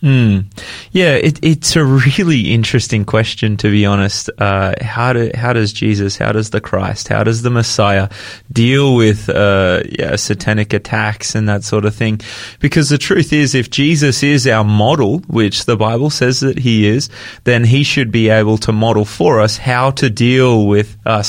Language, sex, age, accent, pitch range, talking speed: English, male, 20-39, Australian, 110-140 Hz, 185 wpm